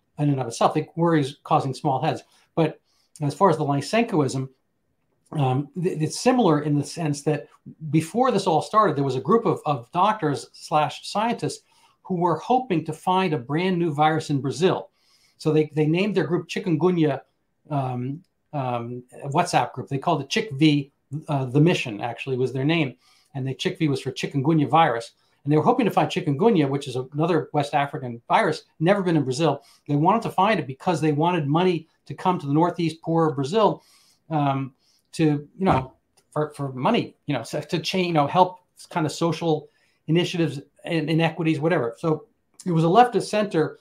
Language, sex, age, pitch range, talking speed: English, male, 60-79, 140-175 Hz, 190 wpm